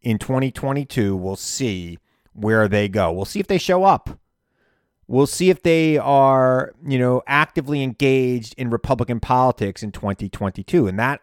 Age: 30-49